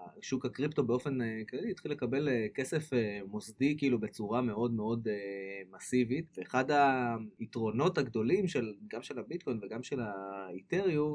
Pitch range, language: 110-135 Hz, Hebrew